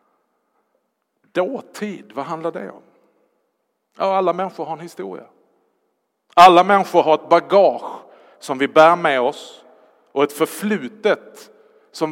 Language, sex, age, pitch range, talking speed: Swedish, male, 50-69, 135-190 Hz, 125 wpm